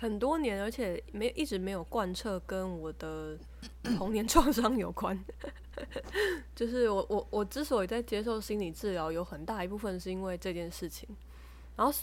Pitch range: 170-220 Hz